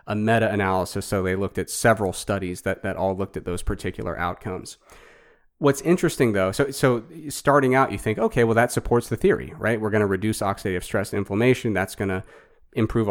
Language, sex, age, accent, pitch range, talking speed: English, male, 30-49, American, 95-120 Hz, 200 wpm